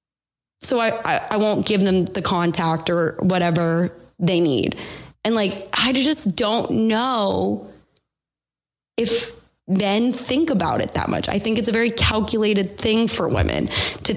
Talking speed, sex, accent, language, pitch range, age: 150 wpm, female, American, English, 180-215 Hz, 20-39